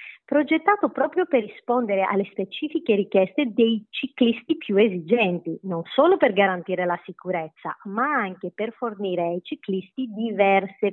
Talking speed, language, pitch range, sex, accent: 130 wpm, Italian, 185-240 Hz, female, native